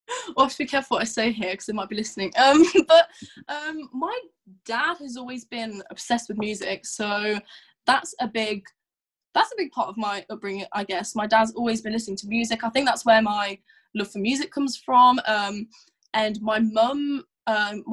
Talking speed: 215 wpm